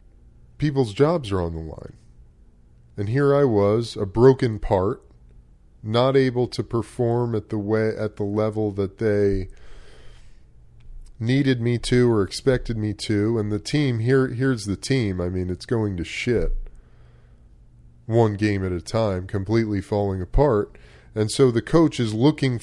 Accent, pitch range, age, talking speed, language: American, 80-120 Hz, 30-49, 155 wpm, English